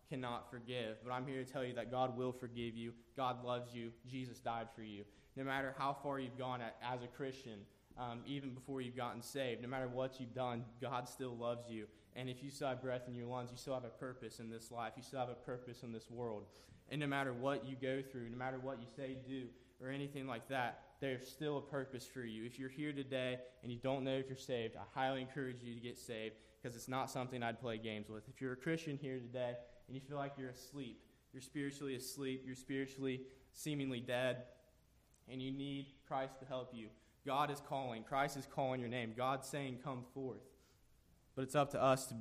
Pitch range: 120-135 Hz